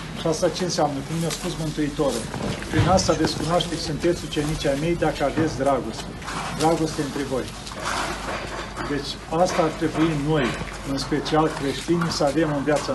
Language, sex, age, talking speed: Romanian, male, 40-59, 155 wpm